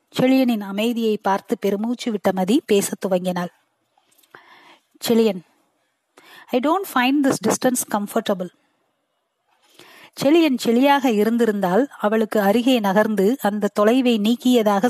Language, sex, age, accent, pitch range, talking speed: Tamil, female, 20-39, native, 210-285 Hz, 45 wpm